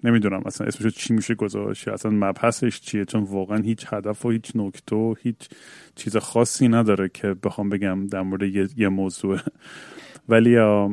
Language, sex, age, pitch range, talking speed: Persian, male, 30-49, 105-120 Hz, 165 wpm